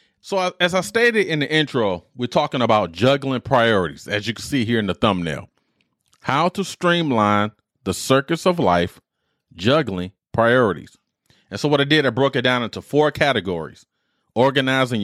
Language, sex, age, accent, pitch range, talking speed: English, male, 30-49, American, 105-145 Hz, 170 wpm